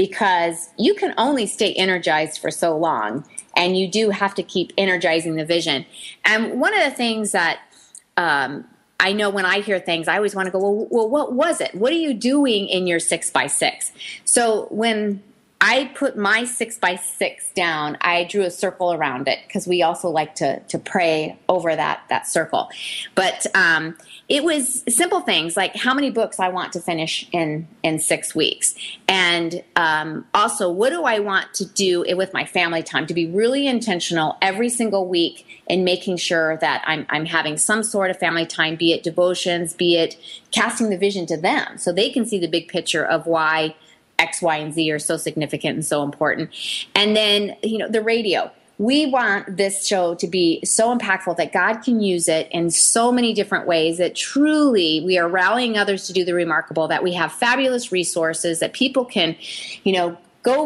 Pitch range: 170-220 Hz